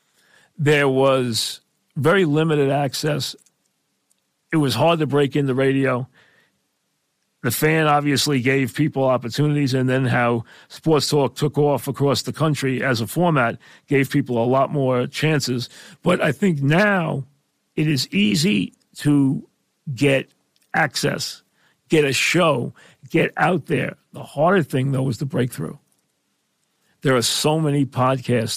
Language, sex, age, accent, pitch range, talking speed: English, male, 40-59, American, 130-150 Hz, 140 wpm